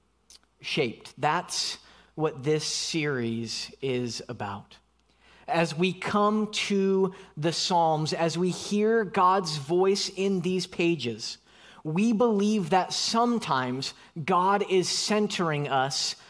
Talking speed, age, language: 105 wpm, 20-39, English